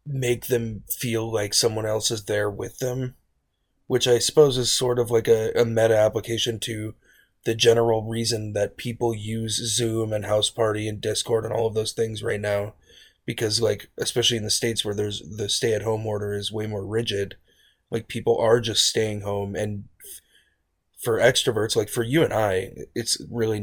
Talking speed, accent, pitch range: 190 wpm, American, 100-115 Hz